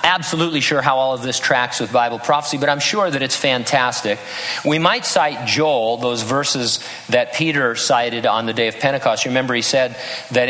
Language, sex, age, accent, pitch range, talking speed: English, male, 50-69, American, 110-130 Hz, 195 wpm